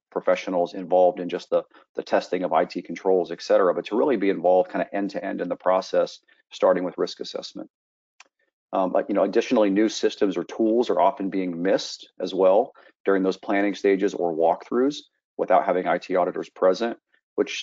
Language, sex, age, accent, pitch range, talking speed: German, male, 40-59, American, 90-105 Hz, 190 wpm